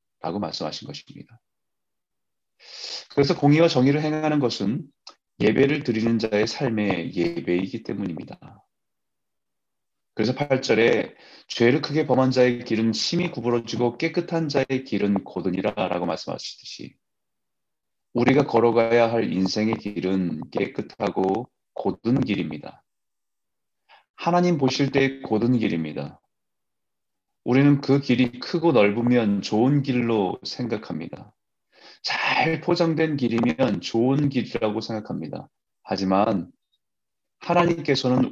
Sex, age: male, 30-49